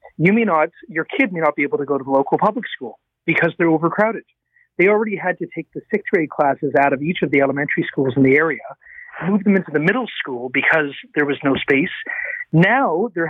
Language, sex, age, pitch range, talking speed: English, male, 40-59, 150-200 Hz, 230 wpm